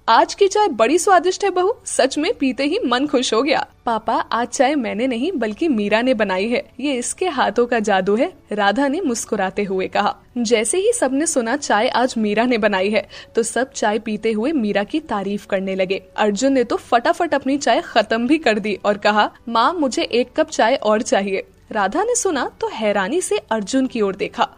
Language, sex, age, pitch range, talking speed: Hindi, female, 10-29, 215-295 Hz, 210 wpm